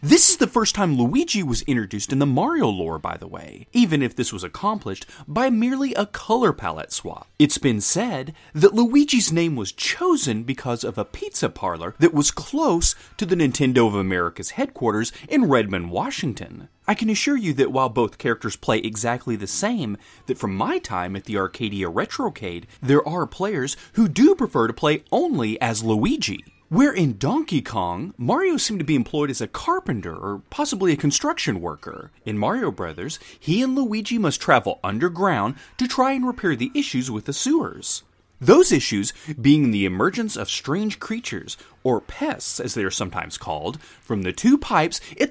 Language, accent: English, American